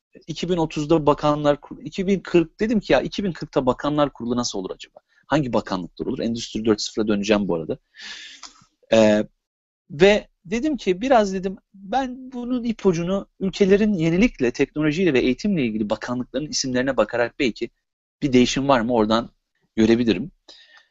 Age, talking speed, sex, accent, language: 40-59, 130 wpm, male, native, Turkish